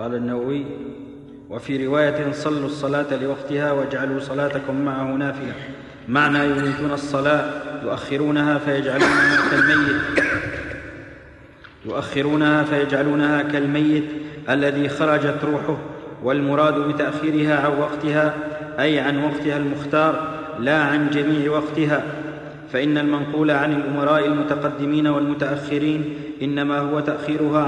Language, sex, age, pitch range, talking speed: Arabic, male, 40-59, 145-155 Hz, 95 wpm